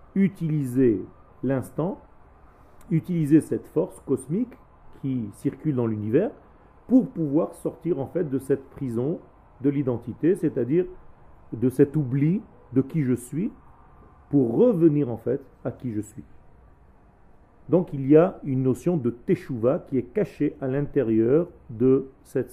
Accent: French